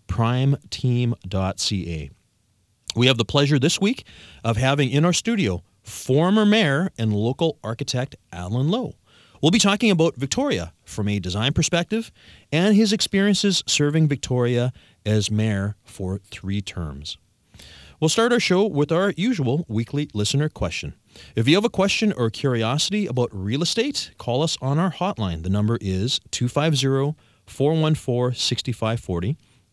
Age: 30-49